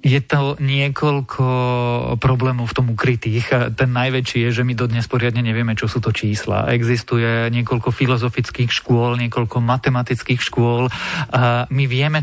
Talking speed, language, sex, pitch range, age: 145 wpm, Slovak, male, 115-130 Hz, 40-59